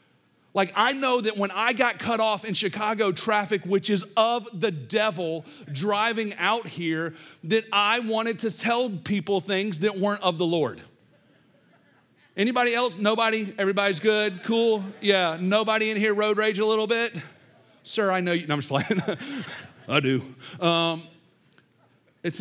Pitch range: 130-205 Hz